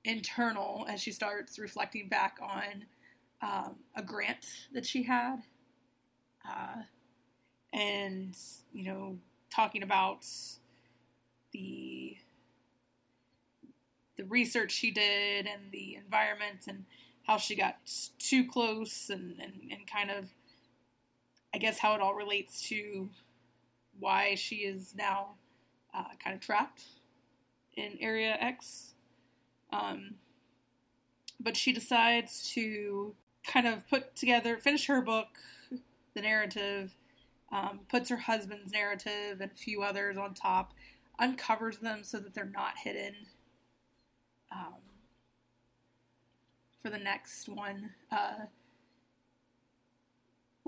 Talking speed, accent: 110 wpm, American